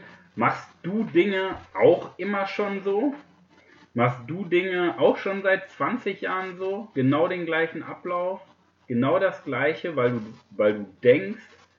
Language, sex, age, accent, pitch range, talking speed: German, male, 30-49, German, 120-170 Hz, 145 wpm